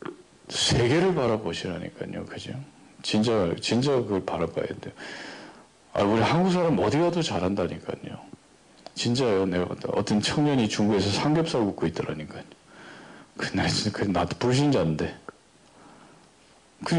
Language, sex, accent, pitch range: Korean, male, native, 95-135 Hz